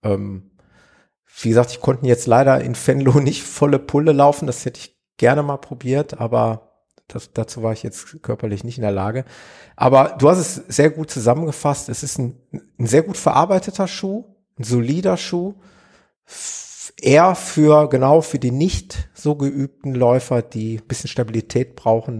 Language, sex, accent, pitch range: German, male, German, 110-145 Hz